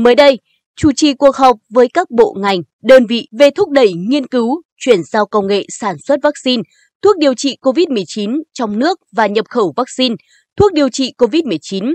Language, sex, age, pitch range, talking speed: Vietnamese, female, 20-39, 220-295 Hz, 190 wpm